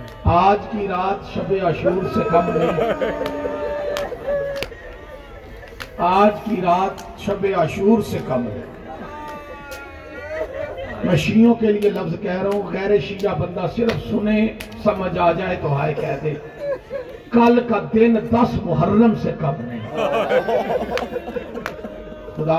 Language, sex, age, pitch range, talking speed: Urdu, male, 40-59, 170-215 Hz, 120 wpm